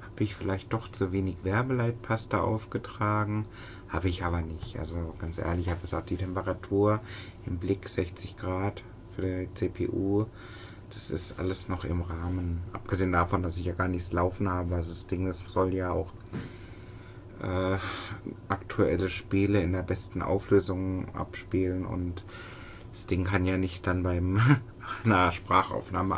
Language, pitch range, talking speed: German, 90-110 Hz, 150 wpm